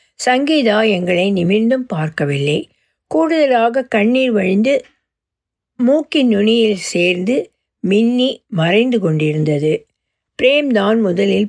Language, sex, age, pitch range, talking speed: Tamil, female, 60-79, 185-250 Hz, 80 wpm